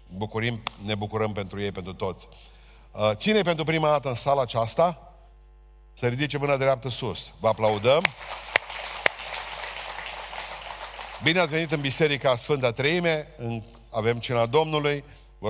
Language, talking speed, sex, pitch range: Romanian, 130 wpm, male, 105-130 Hz